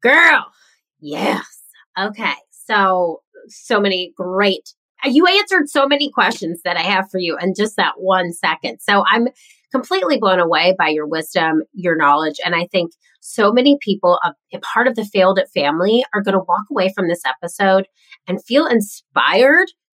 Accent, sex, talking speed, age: American, female, 170 wpm, 30-49